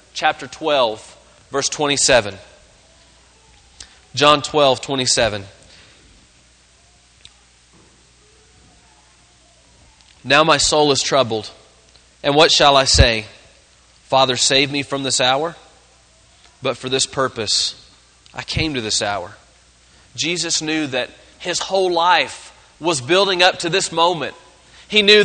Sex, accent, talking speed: male, American, 110 wpm